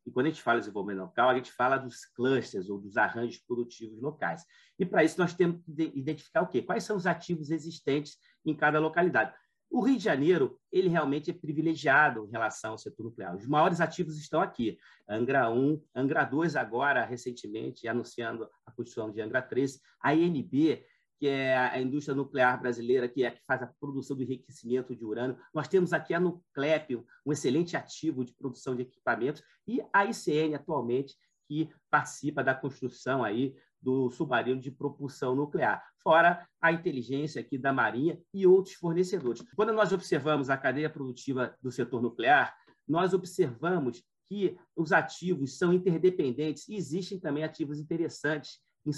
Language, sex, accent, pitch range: Portuguese, male, Brazilian, 130-170 Hz